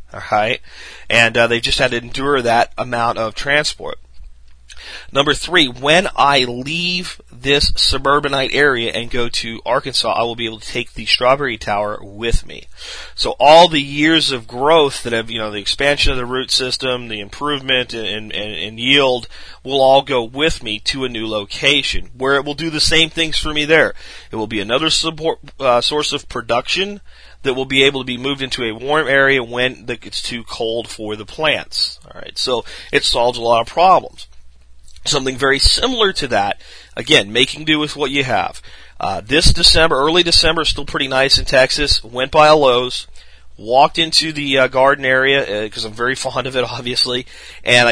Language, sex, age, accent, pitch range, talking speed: English, male, 30-49, American, 115-145 Hz, 190 wpm